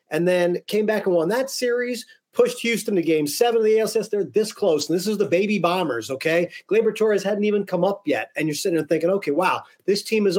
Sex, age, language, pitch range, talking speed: male, 40-59, English, 165-215 Hz, 250 wpm